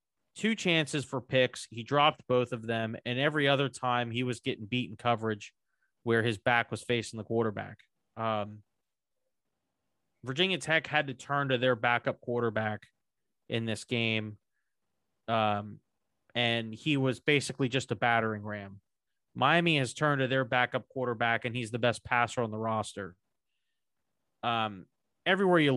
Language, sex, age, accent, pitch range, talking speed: English, male, 30-49, American, 110-130 Hz, 150 wpm